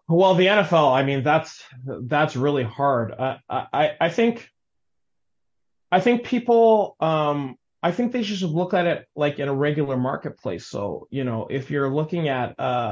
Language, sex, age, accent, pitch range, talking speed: English, male, 30-49, American, 125-165 Hz, 170 wpm